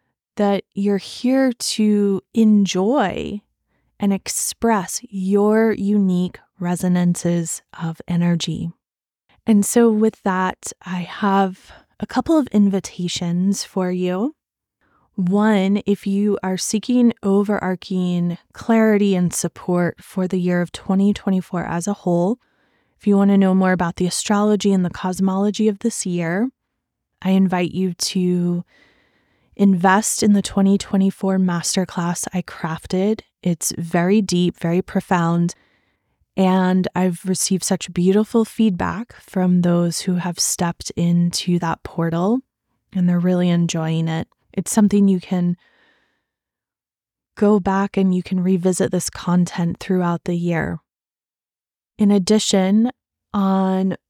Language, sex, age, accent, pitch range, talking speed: English, female, 20-39, American, 175-205 Hz, 120 wpm